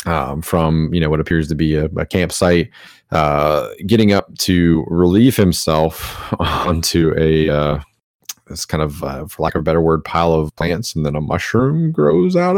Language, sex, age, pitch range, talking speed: English, male, 30-49, 75-90 Hz, 185 wpm